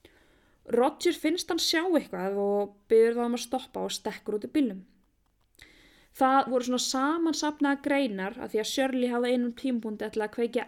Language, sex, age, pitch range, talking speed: English, female, 20-39, 200-265 Hz, 175 wpm